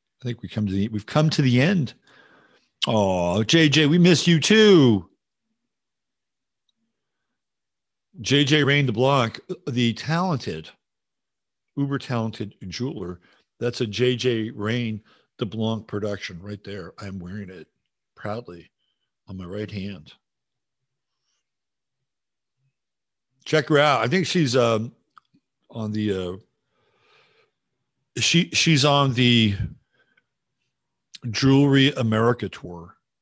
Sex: male